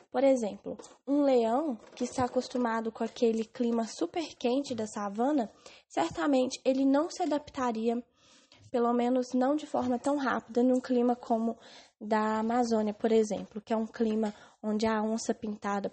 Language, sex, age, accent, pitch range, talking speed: English, female, 10-29, Brazilian, 220-260 Hz, 155 wpm